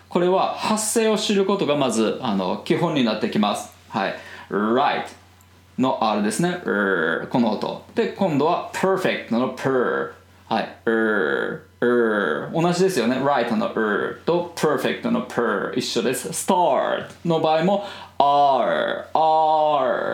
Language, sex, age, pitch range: Japanese, male, 20-39, 145-215 Hz